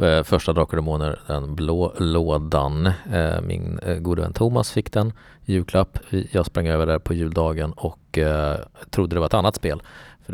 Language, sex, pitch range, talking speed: English, male, 80-100 Hz, 165 wpm